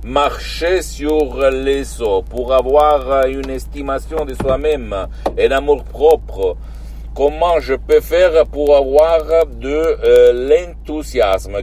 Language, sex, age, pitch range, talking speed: Italian, male, 50-69, 125-160 Hz, 115 wpm